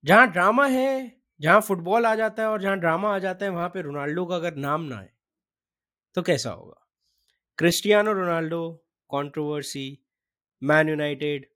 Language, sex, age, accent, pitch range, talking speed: Hindi, male, 20-39, native, 140-205 Hz, 155 wpm